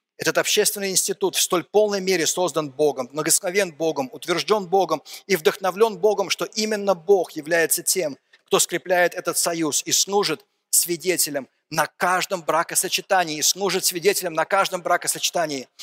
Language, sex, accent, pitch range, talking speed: Russian, male, native, 150-195 Hz, 140 wpm